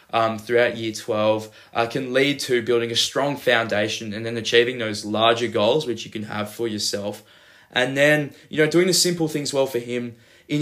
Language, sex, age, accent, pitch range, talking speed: English, male, 20-39, Australian, 110-125 Hz, 205 wpm